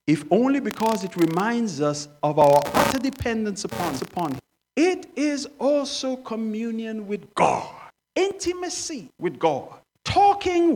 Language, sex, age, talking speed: English, male, 50-69, 125 wpm